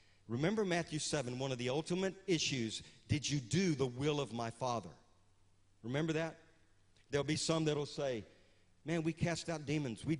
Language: English